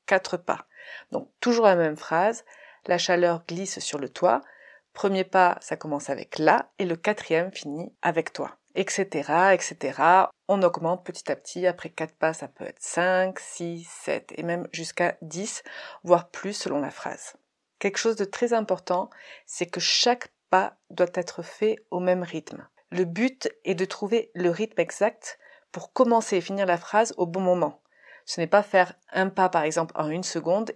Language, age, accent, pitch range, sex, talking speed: French, 30-49, French, 175-215 Hz, female, 180 wpm